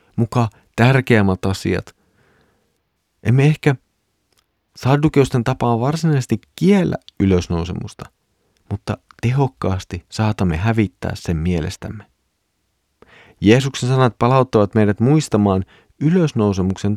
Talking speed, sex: 80 wpm, male